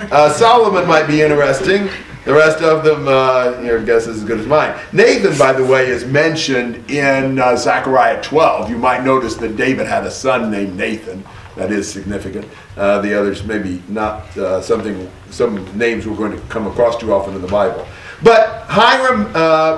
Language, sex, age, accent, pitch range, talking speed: English, male, 50-69, American, 125-180 Hz, 190 wpm